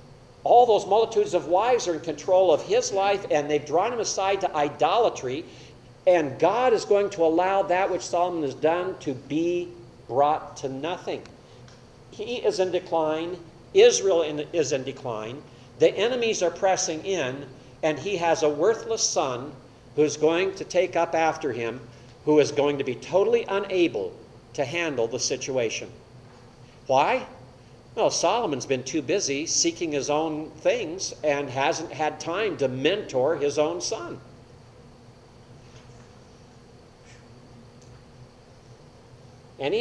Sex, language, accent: male, English, American